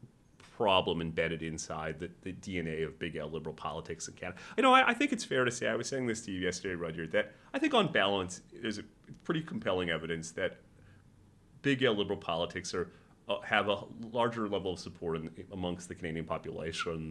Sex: male